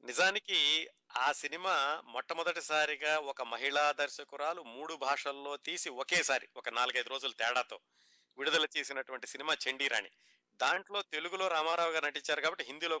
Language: Telugu